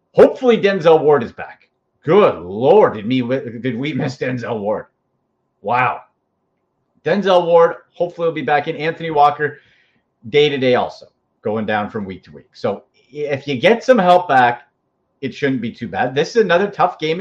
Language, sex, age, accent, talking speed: English, male, 40-59, American, 170 wpm